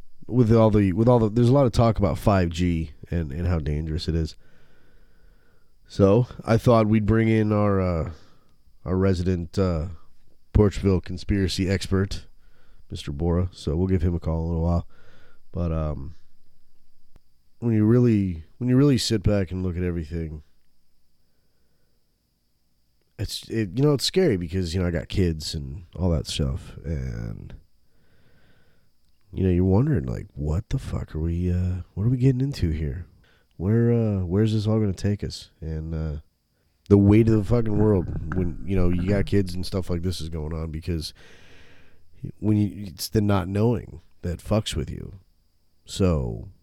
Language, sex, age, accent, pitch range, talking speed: English, male, 30-49, American, 80-105 Hz, 170 wpm